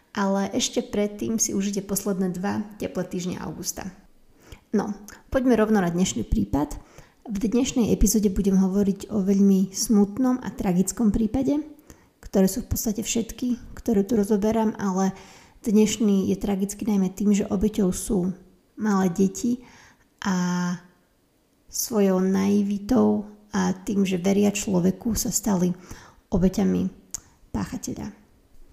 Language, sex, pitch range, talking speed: Slovak, female, 195-230 Hz, 120 wpm